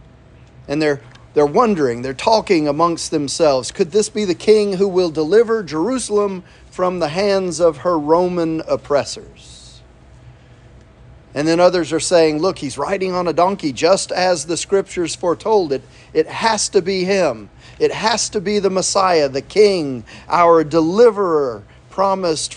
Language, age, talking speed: English, 40-59, 150 wpm